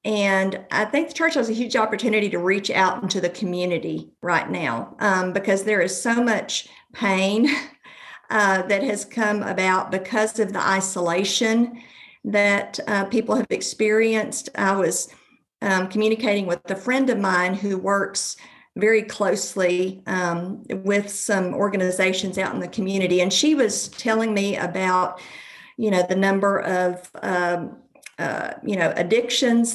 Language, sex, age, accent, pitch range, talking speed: English, female, 50-69, American, 190-225 Hz, 150 wpm